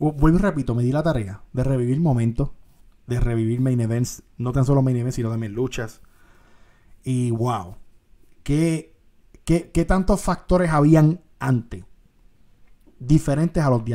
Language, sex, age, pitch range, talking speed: Spanish, male, 30-49, 115-155 Hz, 145 wpm